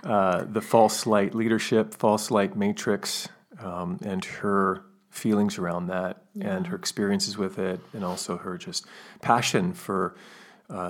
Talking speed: 145 wpm